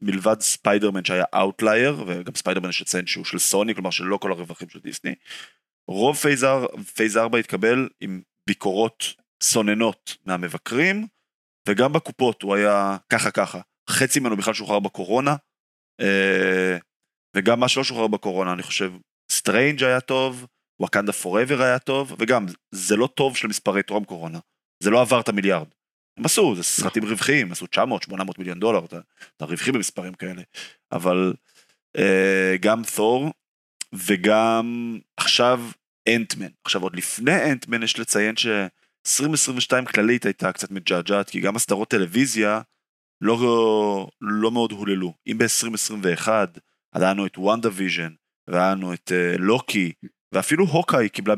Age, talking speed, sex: 20-39, 125 wpm, male